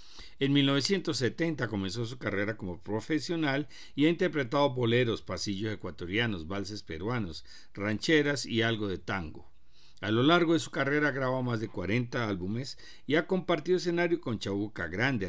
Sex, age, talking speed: male, 50-69, 155 wpm